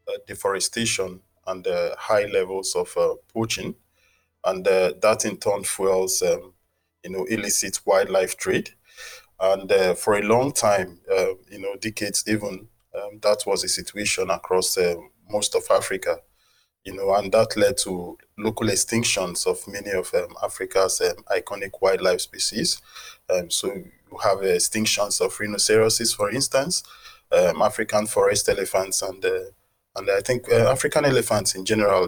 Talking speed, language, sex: 160 wpm, English, male